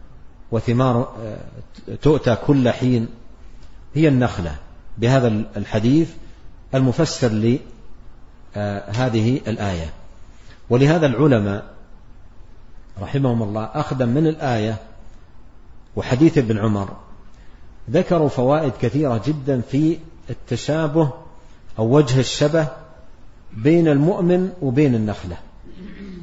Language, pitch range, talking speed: Arabic, 110-150 Hz, 80 wpm